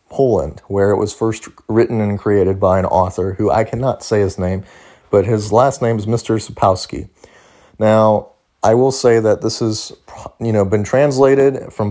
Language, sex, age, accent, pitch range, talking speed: English, male, 30-49, American, 100-115 Hz, 180 wpm